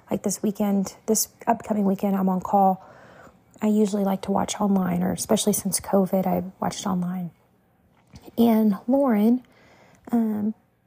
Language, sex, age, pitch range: English, female, 30-49, 195-230 Hz